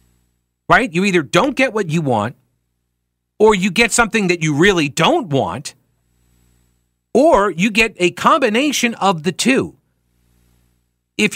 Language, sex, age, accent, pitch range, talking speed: English, male, 40-59, American, 115-185 Hz, 135 wpm